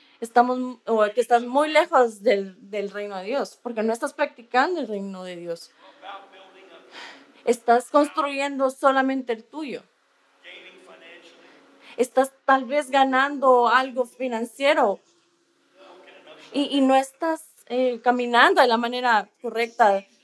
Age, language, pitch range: 20-39, English, 220-275 Hz